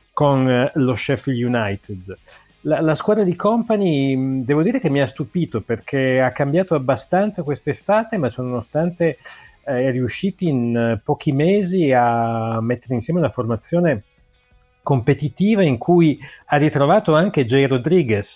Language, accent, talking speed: Italian, native, 135 wpm